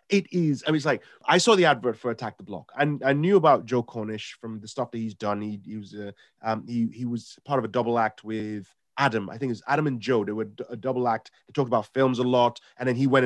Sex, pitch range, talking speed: male, 110-135 Hz, 280 wpm